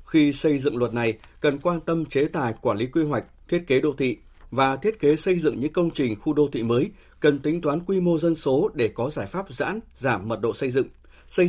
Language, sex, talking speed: Vietnamese, male, 250 wpm